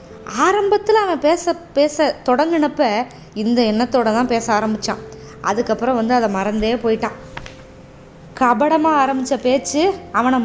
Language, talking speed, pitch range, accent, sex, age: Tamil, 110 wpm, 205-280 Hz, native, female, 20-39